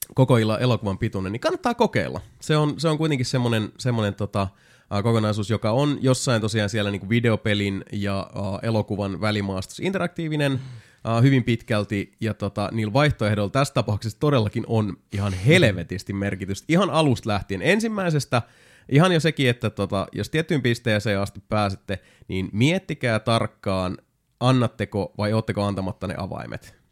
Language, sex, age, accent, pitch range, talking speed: Finnish, male, 30-49, native, 100-130 Hz, 140 wpm